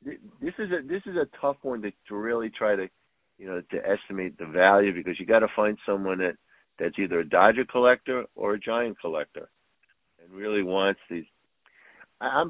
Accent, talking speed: American, 190 wpm